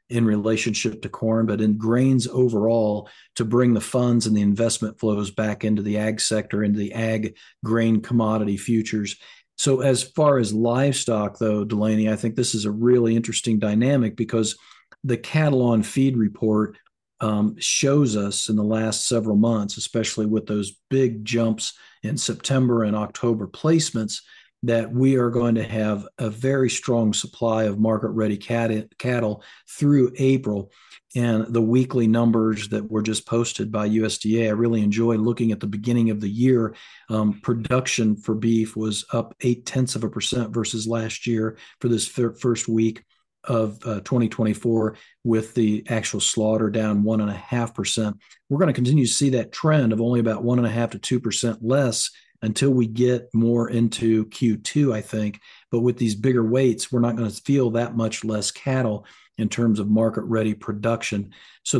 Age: 50-69